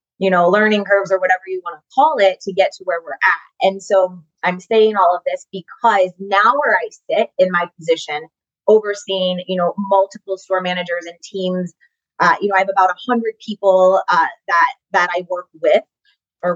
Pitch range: 175-210 Hz